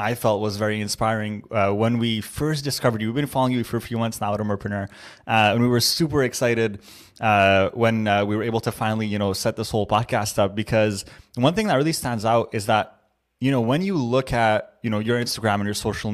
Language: English